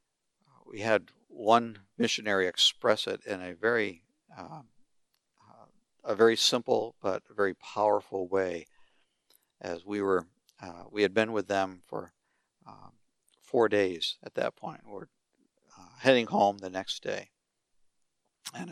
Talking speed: 135 wpm